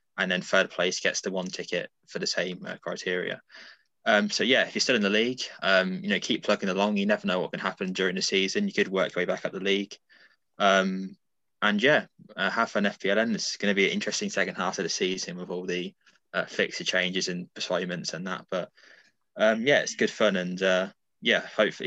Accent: British